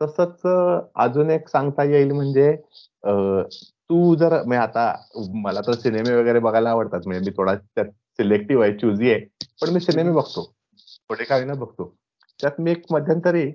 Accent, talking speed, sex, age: native, 170 wpm, male, 30-49